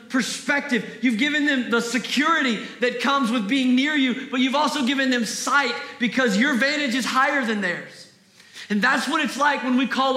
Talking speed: 195 wpm